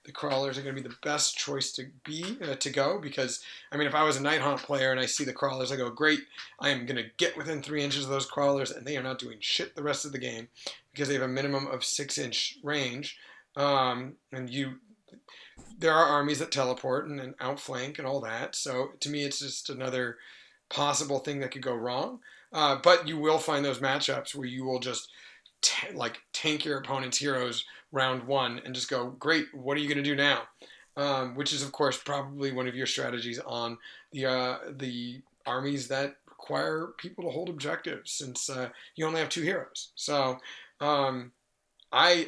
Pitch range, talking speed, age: 130-150 Hz, 210 wpm, 30-49